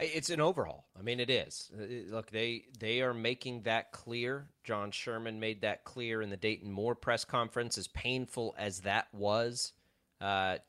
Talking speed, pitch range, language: 175 wpm, 100-130 Hz, English